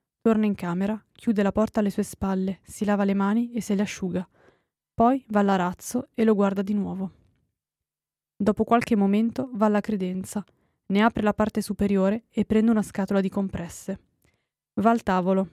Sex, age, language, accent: female, 20-39, Italian, native